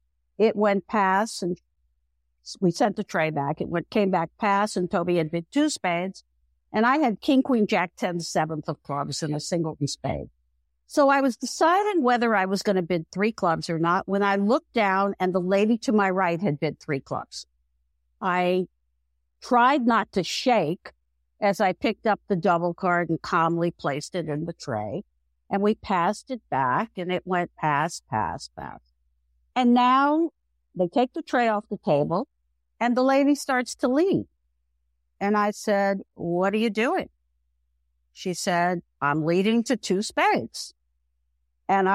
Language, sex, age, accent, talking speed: English, female, 50-69, American, 175 wpm